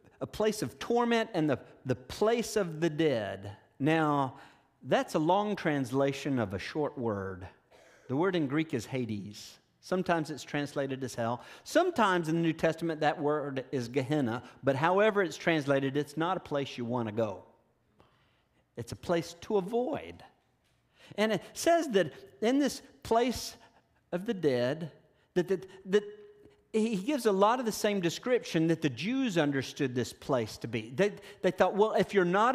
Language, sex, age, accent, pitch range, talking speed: English, male, 50-69, American, 135-200 Hz, 170 wpm